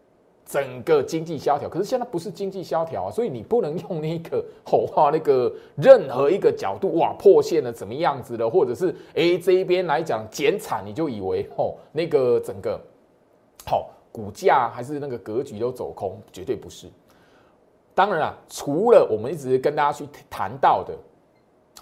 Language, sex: Chinese, male